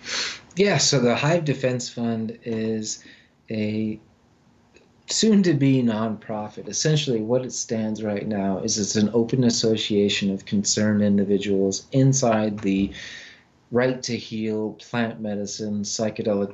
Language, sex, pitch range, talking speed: English, male, 105-120 Hz, 125 wpm